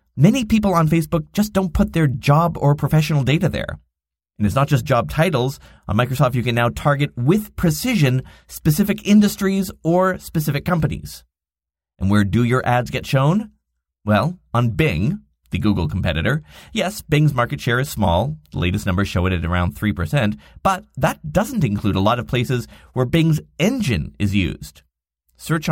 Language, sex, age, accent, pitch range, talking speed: English, male, 30-49, American, 90-150 Hz, 170 wpm